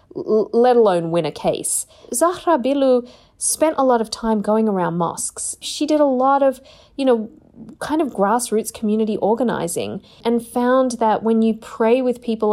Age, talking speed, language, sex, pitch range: 40-59, 170 wpm, English, female, 180-235 Hz